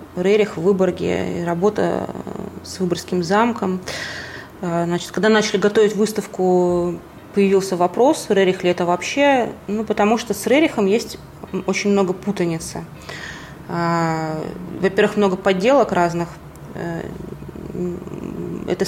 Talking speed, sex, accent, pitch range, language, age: 100 wpm, female, native, 175-205 Hz, Russian, 20-39